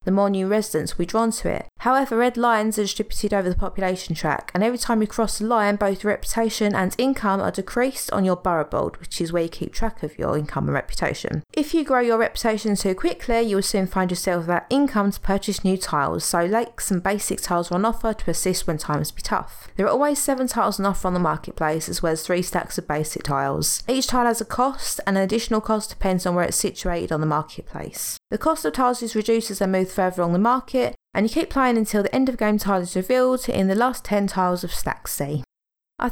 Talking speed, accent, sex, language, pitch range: 245 wpm, British, female, English, 185-240 Hz